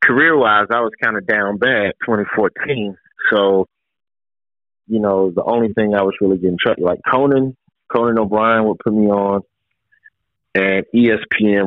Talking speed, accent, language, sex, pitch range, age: 150 wpm, American, English, male, 100-140 Hz, 30-49